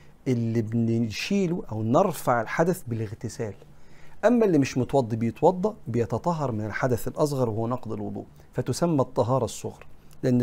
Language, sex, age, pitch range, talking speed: Arabic, male, 50-69, 115-145 Hz, 125 wpm